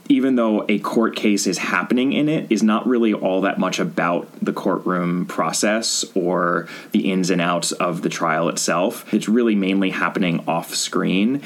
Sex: male